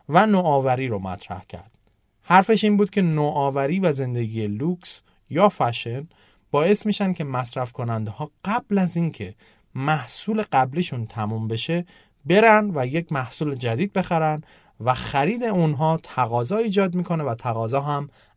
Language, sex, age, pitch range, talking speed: Persian, male, 30-49, 115-180 Hz, 140 wpm